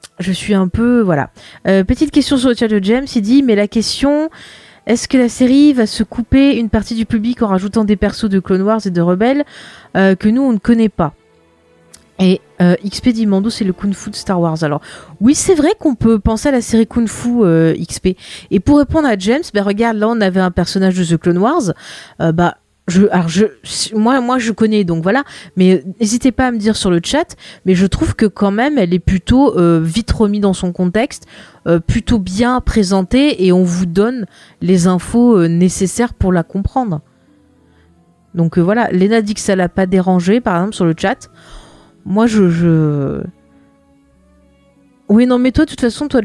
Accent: French